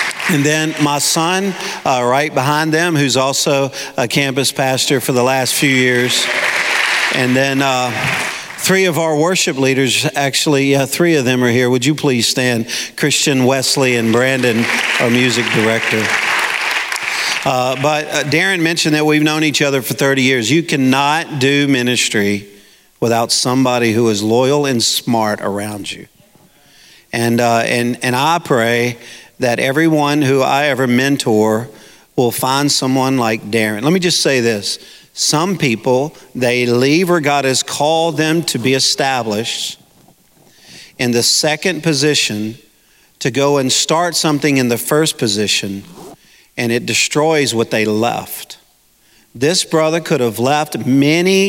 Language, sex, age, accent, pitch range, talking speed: English, male, 50-69, American, 120-150 Hz, 150 wpm